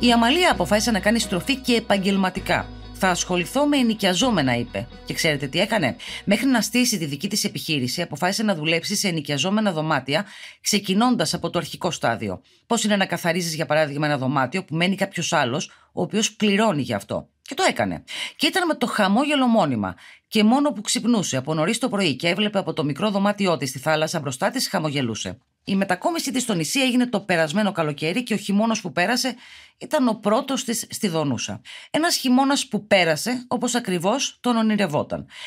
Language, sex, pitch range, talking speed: Greek, female, 155-225 Hz, 185 wpm